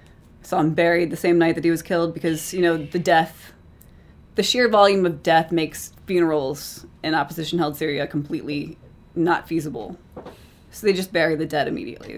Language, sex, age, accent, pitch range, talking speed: English, female, 20-39, American, 160-185 Hz, 180 wpm